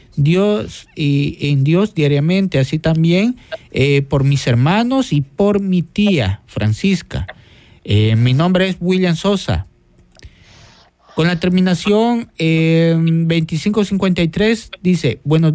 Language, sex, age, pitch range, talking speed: Spanish, male, 50-69, 155-195 Hz, 110 wpm